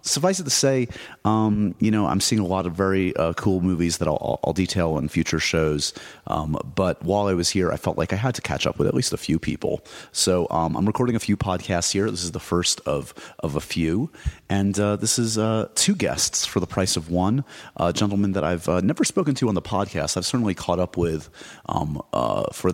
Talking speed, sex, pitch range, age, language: 240 wpm, male, 85-105 Hz, 30-49, English